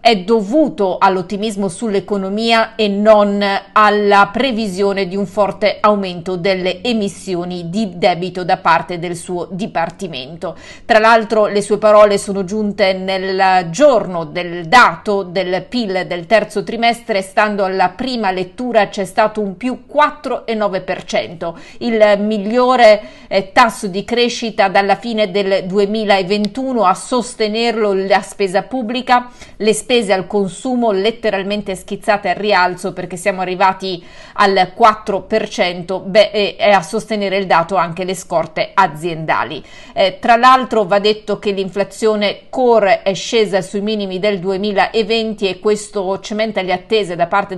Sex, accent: female, native